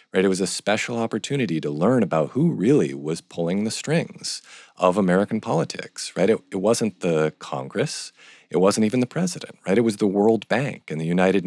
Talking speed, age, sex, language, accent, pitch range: 200 wpm, 40-59, male, English, American, 80-100 Hz